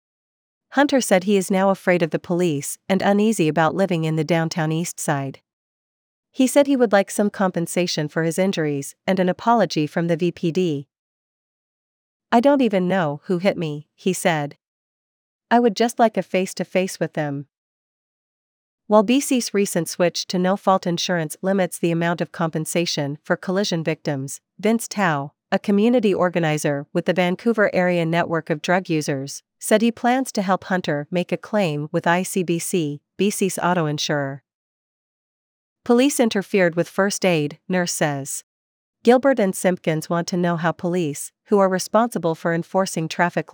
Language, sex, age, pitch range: English, female, 40-59, 160-195 Hz